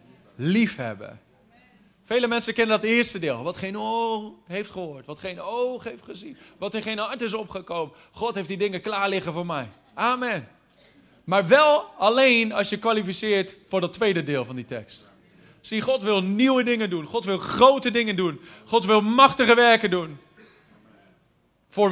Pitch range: 175-235 Hz